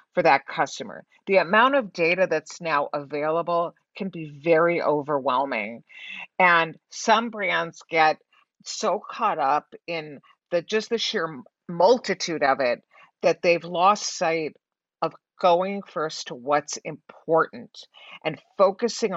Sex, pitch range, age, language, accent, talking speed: female, 155-205 Hz, 50-69, English, American, 130 wpm